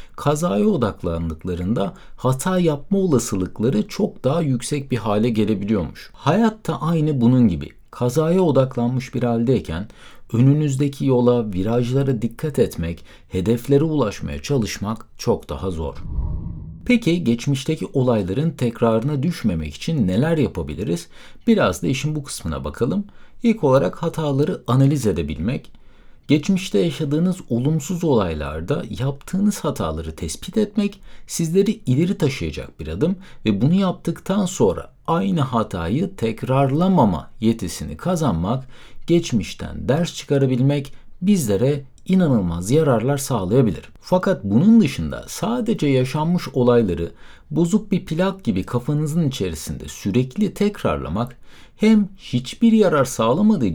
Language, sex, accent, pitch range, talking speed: Turkish, male, native, 110-170 Hz, 105 wpm